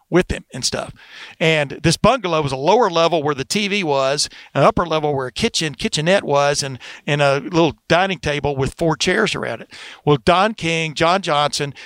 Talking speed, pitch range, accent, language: 195 wpm, 145-195 Hz, American, English